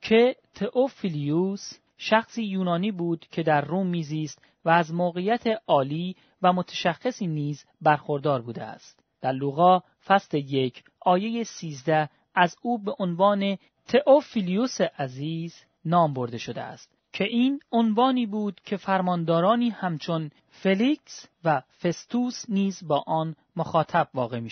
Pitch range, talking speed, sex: 150-205 Hz, 125 wpm, male